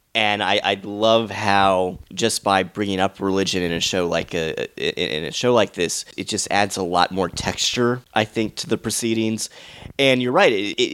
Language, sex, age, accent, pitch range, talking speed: English, male, 30-49, American, 90-110 Hz, 195 wpm